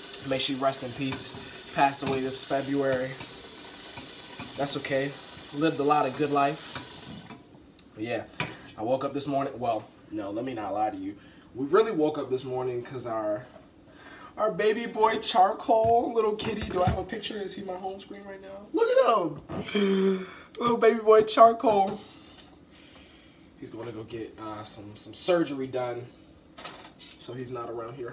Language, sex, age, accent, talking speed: English, male, 20-39, American, 170 wpm